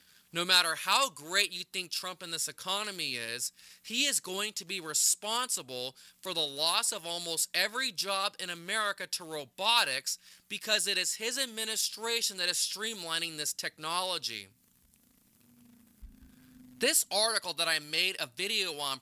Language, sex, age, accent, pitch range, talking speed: English, male, 20-39, American, 145-195 Hz, 145 wpm